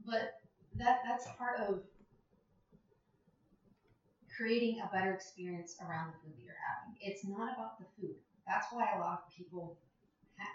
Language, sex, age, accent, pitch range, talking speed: English, female, 30-49, American, 155-190 Hz, 155 wpm